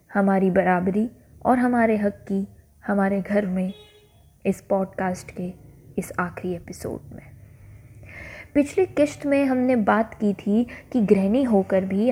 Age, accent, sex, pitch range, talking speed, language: 20-39, native, female, 195-245 Hz, 135 wpm, Hindi